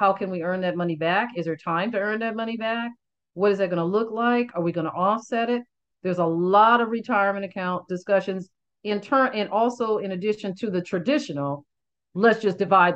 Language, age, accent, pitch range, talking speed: English, 50-69, American, 175-215 Hz, 220 wpm